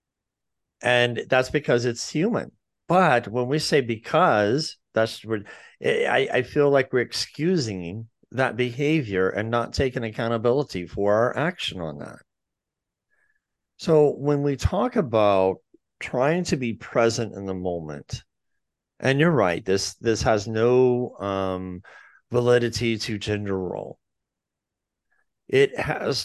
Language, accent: English, American